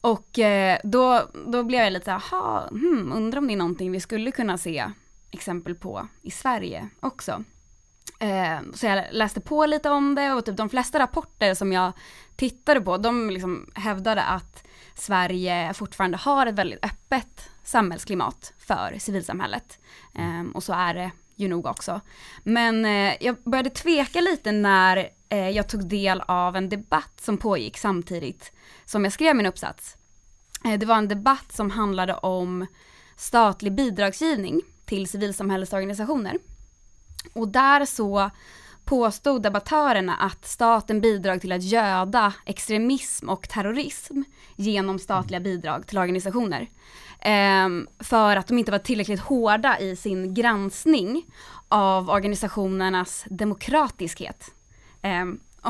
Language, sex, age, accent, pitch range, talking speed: Swedish, female, 20-39, Norwegian, 185-235 Hz, 130 wpm